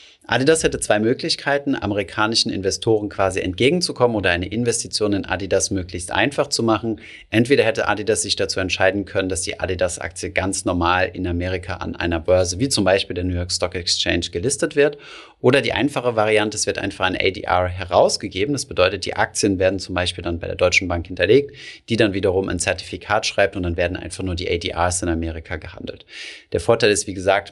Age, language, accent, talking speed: 30-49, German, German, 190 wpm